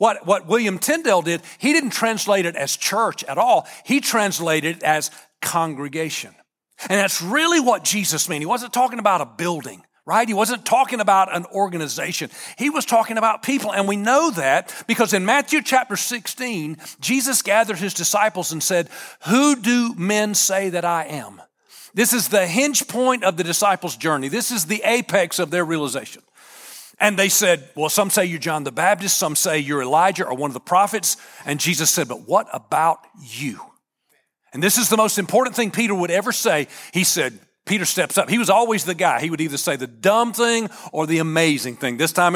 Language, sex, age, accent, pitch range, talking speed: English, male, 40-59, American, 160-225 Hz, 200 wpm